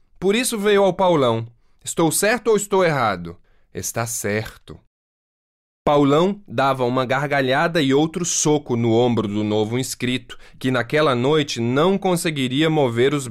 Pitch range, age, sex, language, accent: 110-155 Hz, 20-39, male, Chinese, Brazilian